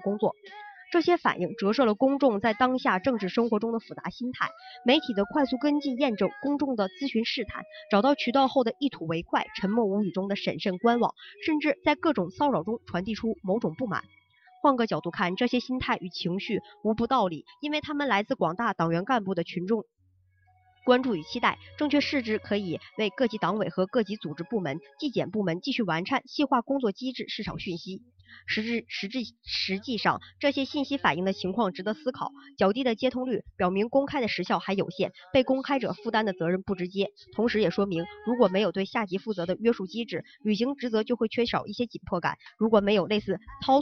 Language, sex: Chinese, male